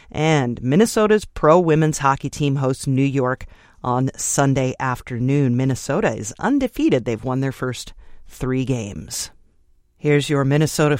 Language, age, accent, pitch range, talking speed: English, 40-59, American, 125-150 Hz, 125 wpm